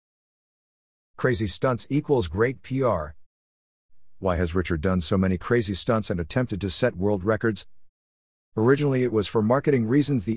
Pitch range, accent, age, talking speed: 90-125 Hz, American, 50-69, 150 wpm